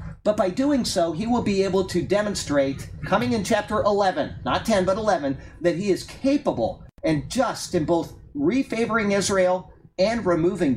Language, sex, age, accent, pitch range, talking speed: English, male, 40-59, American, 145-200 Hz, 165 wpm